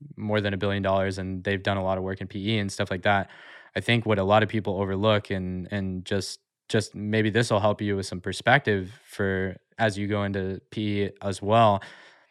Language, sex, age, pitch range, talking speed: English, male, 20-39, 100-115 Hz, 225 wpm